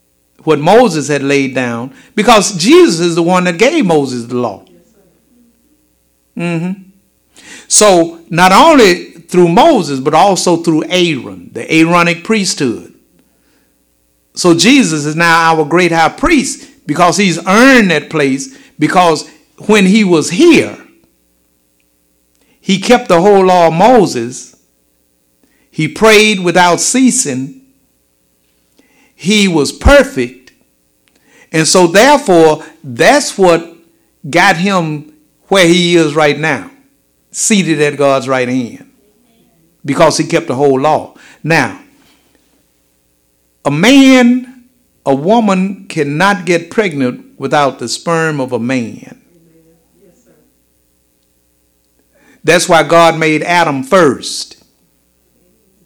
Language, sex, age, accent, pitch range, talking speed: English, male, 60-79, American, 120-185 Hz, 110 wpm